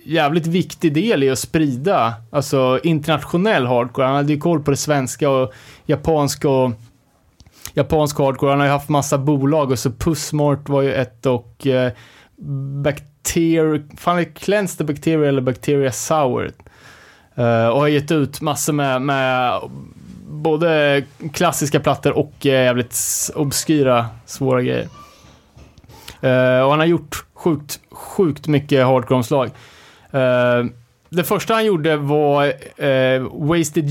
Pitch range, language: 130-155 Hz, Swedish